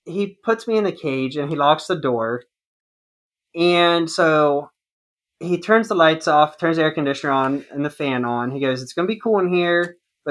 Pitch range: 140-180 Hz